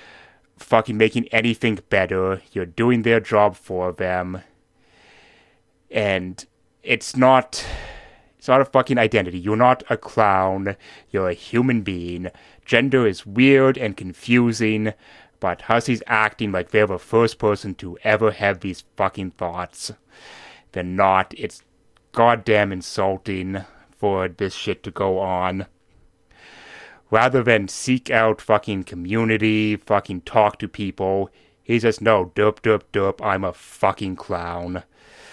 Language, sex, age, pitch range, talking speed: English, male, 30-49, 95-120 Hz, 130 wpm